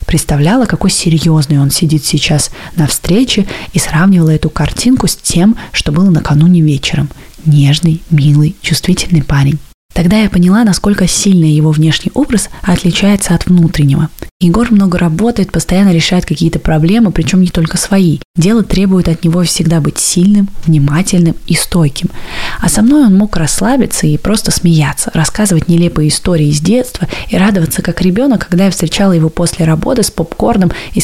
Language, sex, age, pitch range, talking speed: Russian, female, 20-39, 160-195 Hz, 155 wpm